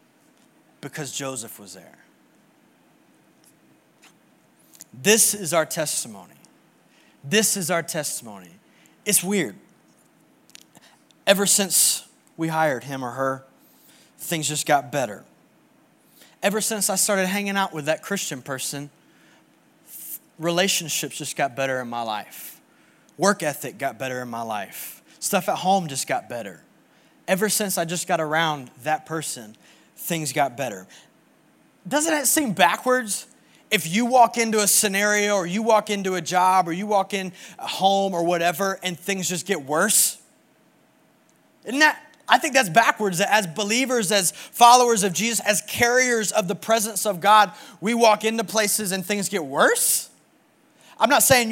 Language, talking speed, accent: English, 145 wpm, American